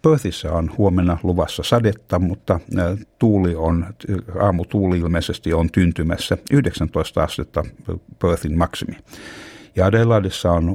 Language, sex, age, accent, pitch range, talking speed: Finnish, male, 60-79, native, 85-100 Hz, 100 wpm